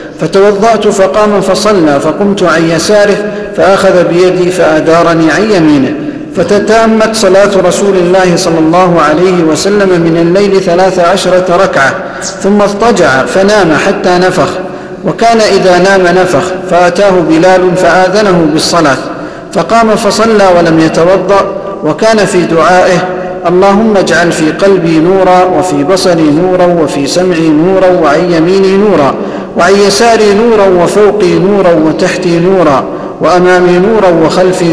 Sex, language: male, Arabic